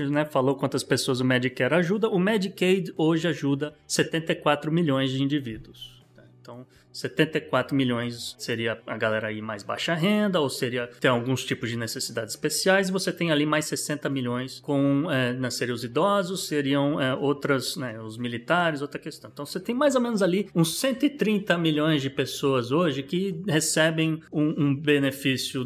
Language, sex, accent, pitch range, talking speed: Portuguese, male, Brazilian, 135-180 Hz, 165 wpm